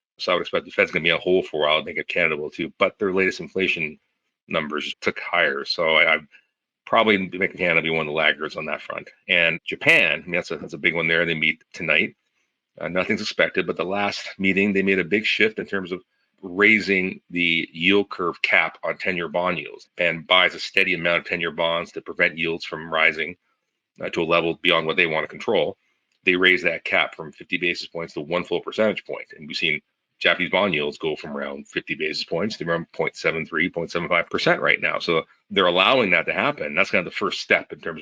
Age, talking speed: 40-59, 230 wpm